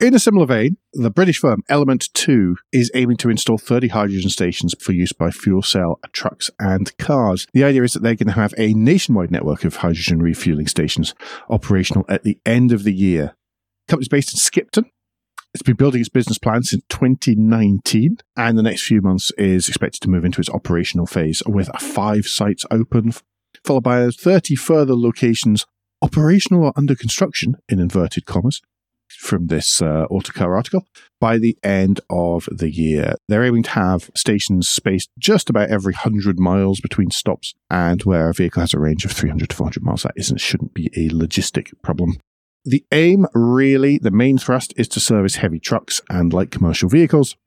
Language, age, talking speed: English, 50-69, 185 wpm